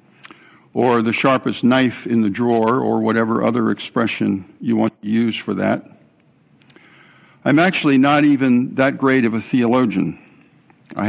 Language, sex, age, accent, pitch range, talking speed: English, male, 60-79, American, 115-145 Hz, 145 wpm